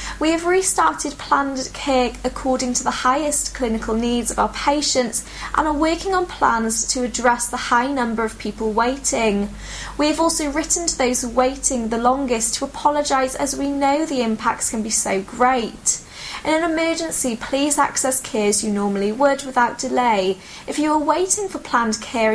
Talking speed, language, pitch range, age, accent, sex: 175 wpm, English, 225-290 Hz, 10-29, British, female